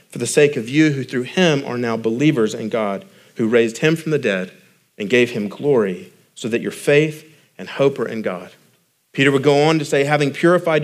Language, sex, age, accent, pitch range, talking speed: English, male, 40-59, American, 120-155 Hz, 220 wpm